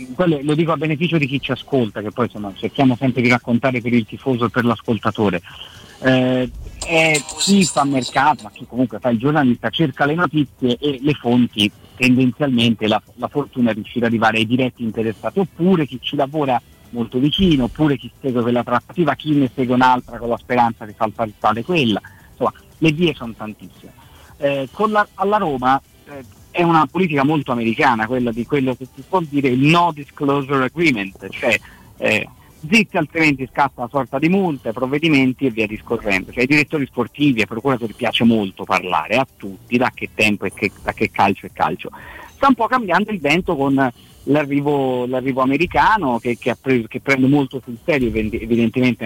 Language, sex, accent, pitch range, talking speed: Italian, male, native, 115-145 Hz, 185 wpm